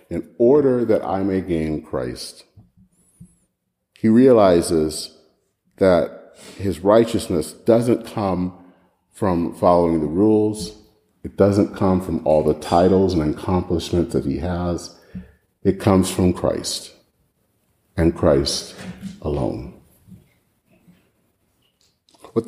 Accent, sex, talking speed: American, male, 100 wpm